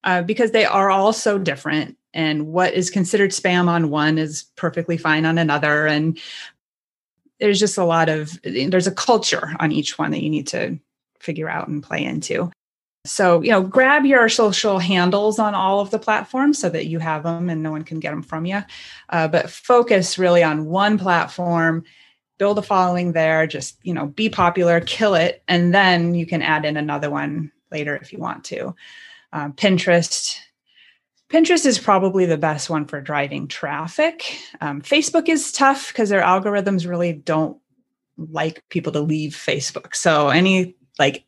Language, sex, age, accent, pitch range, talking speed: English, female, 30-49, American, 160-210 Hz, 180 wpm